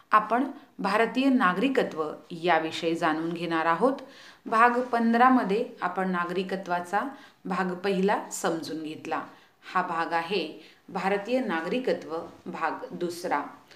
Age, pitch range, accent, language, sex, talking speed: 40-59, 170-250 Hz, native, Hindi, female, 60 wpm